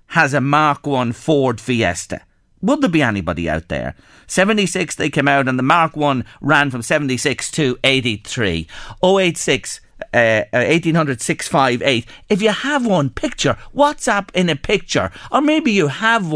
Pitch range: 120-185 Hz